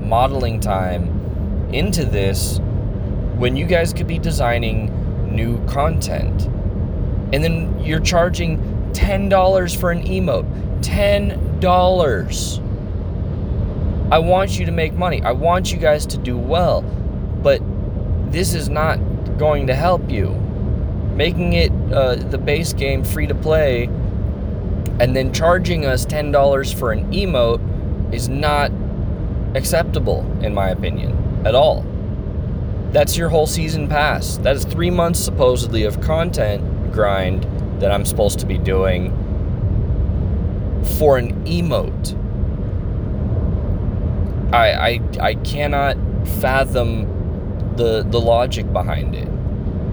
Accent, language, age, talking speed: American, English, 20-39, 120 wpm